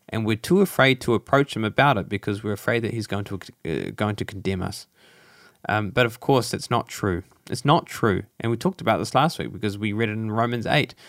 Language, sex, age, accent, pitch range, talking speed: English, male, 20-39, Australian, 105-135 Hz, 245 wpm